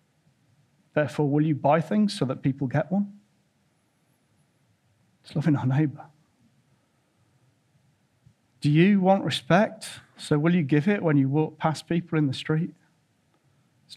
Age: 40-59